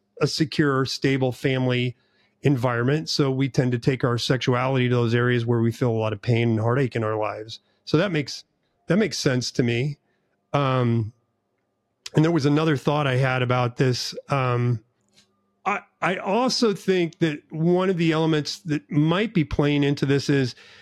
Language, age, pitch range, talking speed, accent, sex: English, 40-59, 130-165 Hz, 180 wpm, American, male